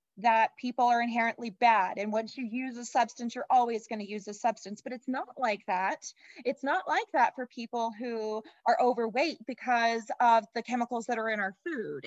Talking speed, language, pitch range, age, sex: 200 wpm, English, 215-250 Hz, 20-39, female